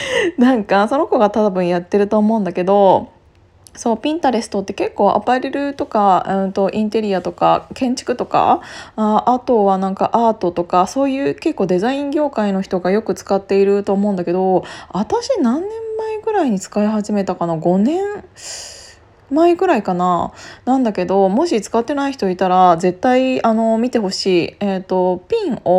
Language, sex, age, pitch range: Japanese, female, 20-39, 185-255 Hz